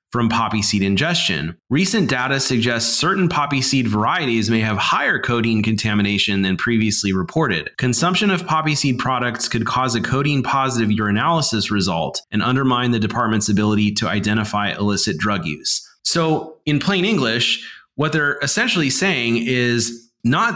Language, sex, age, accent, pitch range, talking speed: English, male, 30-49, American, 110-140 Hz, 150 wpm